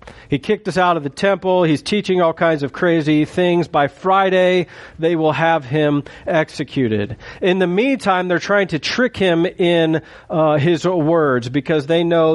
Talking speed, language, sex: 175 wpm, English, male